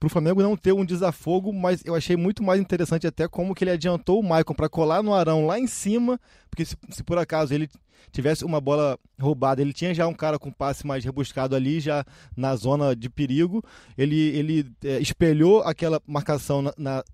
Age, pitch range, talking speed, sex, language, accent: 20-39, 135-165 Hz, 210 wpm, male, Portuguese, Brazilian